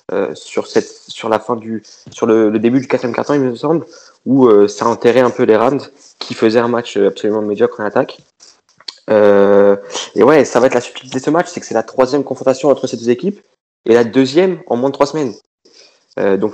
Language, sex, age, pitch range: French, male, 20-39, 110-150 Hz